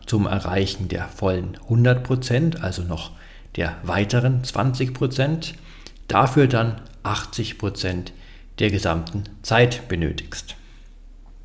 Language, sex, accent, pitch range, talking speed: German, male, German, 95-125 Hz, 90 wpm